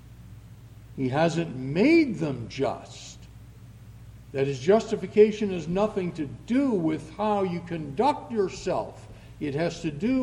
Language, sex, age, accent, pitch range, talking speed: English, male, 60-79, American, 125-210 Hz, 125 wpm